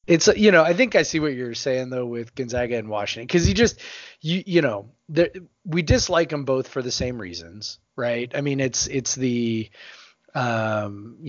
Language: English